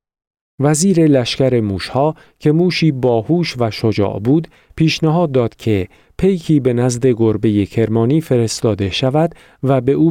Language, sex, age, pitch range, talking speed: Persian, male, 40-59, 115-150 Hz, 130 wpm